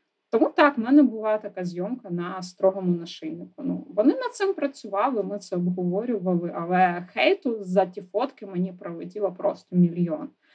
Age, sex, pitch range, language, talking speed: 20-39, female, 190-260 Hz, Ukrainian, 155 wpm